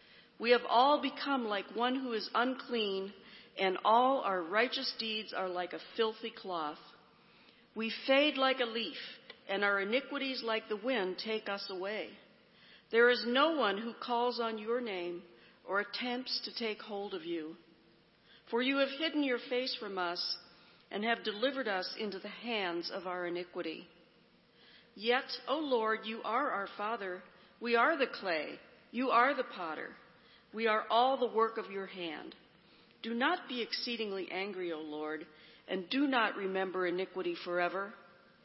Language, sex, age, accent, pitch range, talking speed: English, female, 50-69, American, 190-245 Hz, 160 wpm